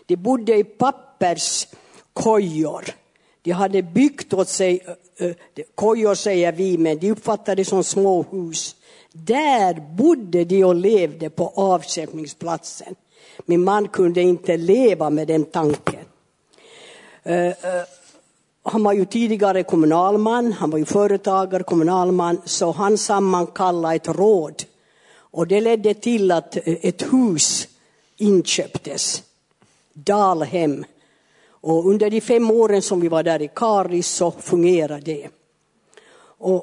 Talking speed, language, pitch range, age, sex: 120 wpm, Swedish, 175-210 Hz, 60-79, female